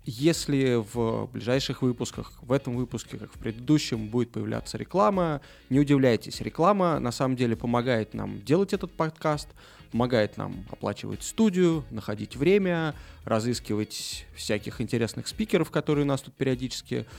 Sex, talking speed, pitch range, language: male, 135 wpm, 115-145 Hz, Russian